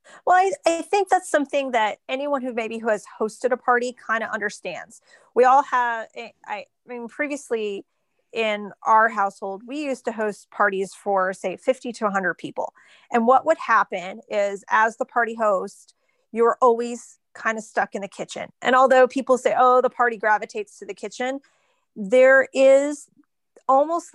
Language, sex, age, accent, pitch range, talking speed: English, female, 30-49, American, 215-260 Hz, 175 wpm